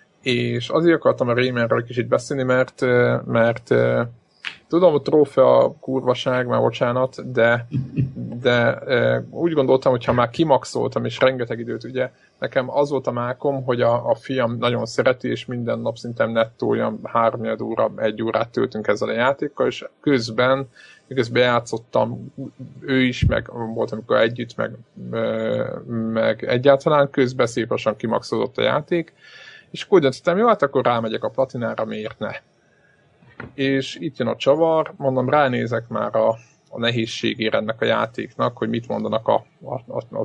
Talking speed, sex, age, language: 155 wpm, male, 20-39, Hungarian